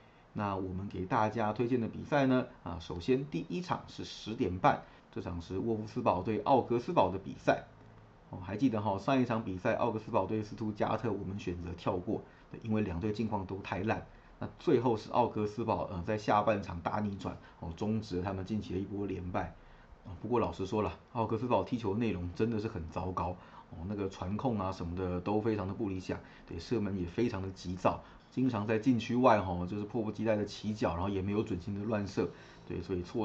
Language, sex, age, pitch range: Chinese, male, 30-49, 95-110 Hz